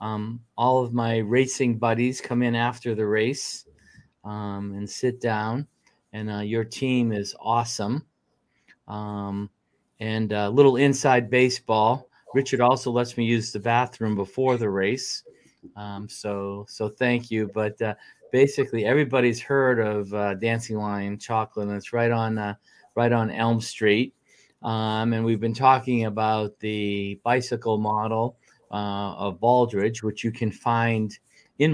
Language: English